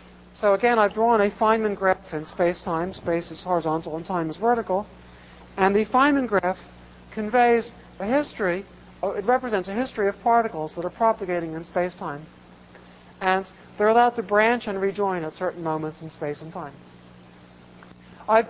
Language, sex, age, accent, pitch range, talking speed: English, male, 60-79, American, 155-205 Hz, 160 wpm